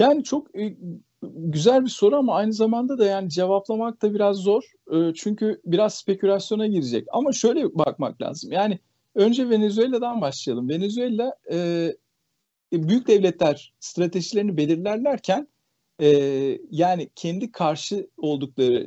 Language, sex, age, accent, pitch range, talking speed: Turkish, male, 50-69, native, 160-220 Hz, 110 wpm